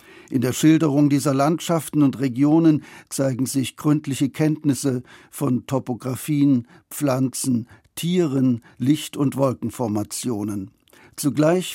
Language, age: German, 60-79